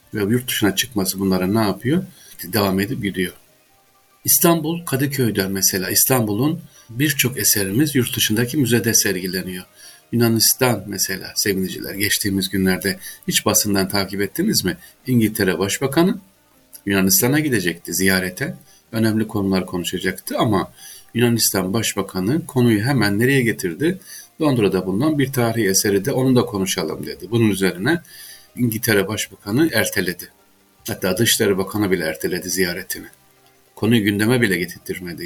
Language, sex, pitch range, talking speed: Turkish, male, 95-120 Hz, 120 wpm